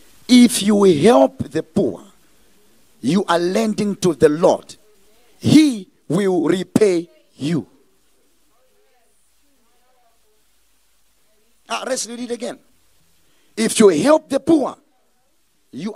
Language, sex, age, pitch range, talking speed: English, male, 50-69, 170-245 Hz, 100 wpm